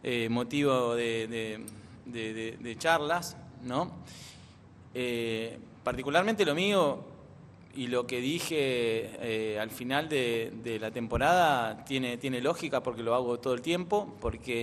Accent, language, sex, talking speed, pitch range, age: Argentinian, Spanish, male, 125 wpm, 120-150 Hz, 20-39